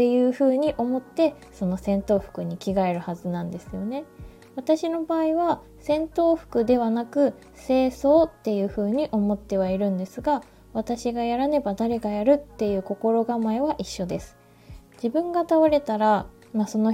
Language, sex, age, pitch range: Japanese, female, 20-39, 200-275 Hz